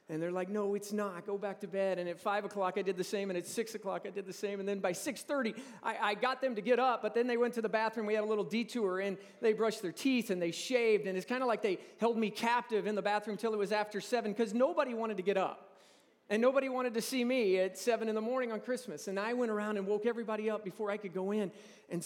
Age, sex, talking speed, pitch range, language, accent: 40-59, male, 290 wpm, 200-235 Hz, English, American